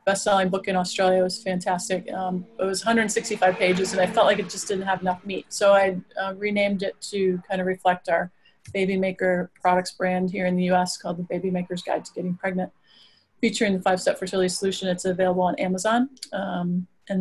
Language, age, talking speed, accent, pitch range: English, 30-49, 215 wpm, American, 180-195 Hz